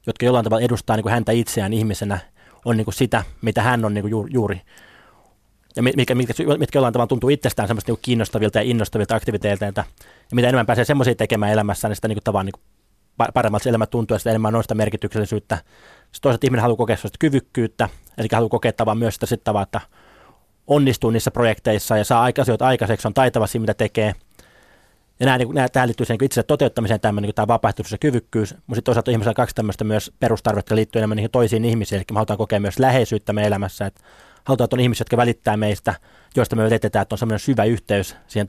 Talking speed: 195 wpm